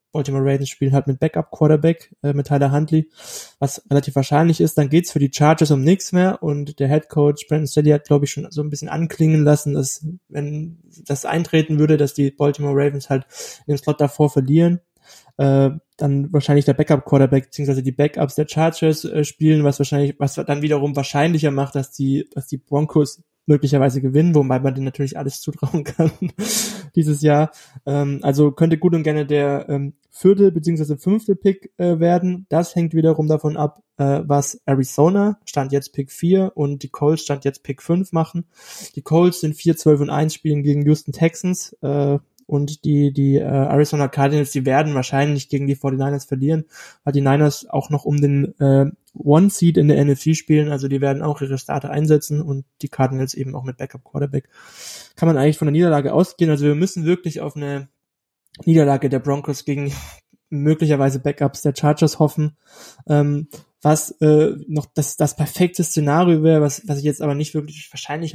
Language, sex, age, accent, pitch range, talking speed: German, male, 20-39, German, 140-160 Hz, 185 wpm